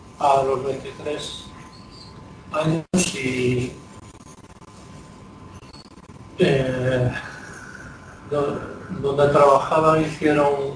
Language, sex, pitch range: Spanish, male, 125-140 Hz